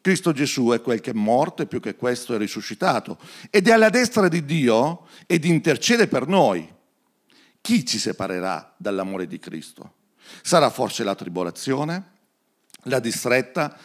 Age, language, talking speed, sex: 50-69, Italian, 150 wpm, male